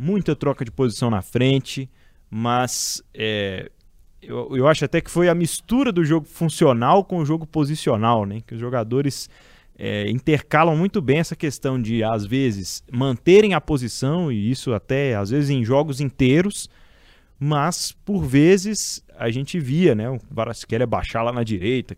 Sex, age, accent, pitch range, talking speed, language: male, 20-39, Brazilian, 120-175 Hz, 165 wpm, Portuguese